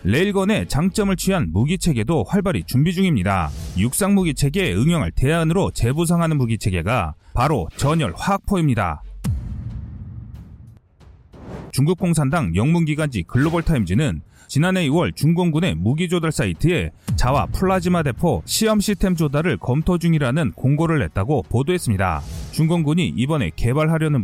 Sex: male